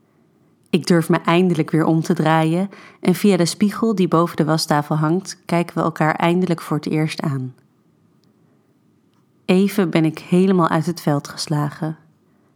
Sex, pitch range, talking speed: female, 155-175 Hz, 160 wpm